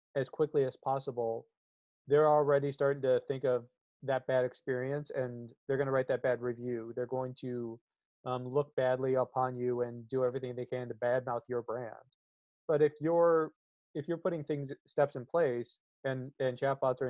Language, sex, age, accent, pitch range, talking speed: English, male, 30-49, American, 125-145 Hz, 180 wpm